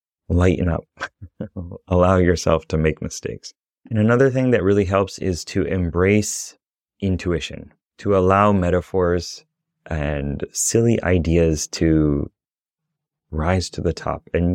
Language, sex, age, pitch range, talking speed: English, male, 30-49, 80-95 Hz, 120 wpm